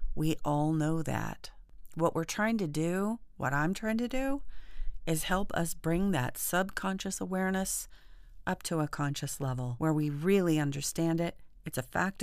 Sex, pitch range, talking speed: female, 140-180 Hz, 165 wpm